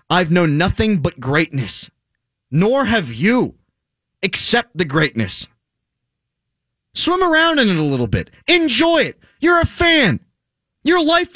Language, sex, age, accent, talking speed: English, male, 30-49, American, 130 wpm